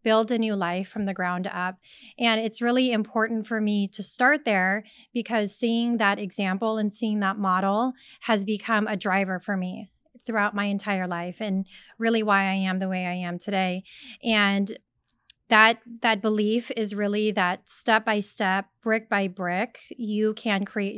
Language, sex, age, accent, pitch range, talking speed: English, female, 30-49, American, 200-235 Hz, 165 wpm